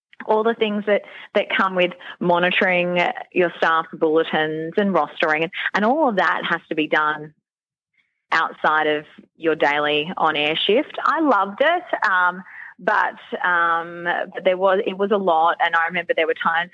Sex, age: female, 20-39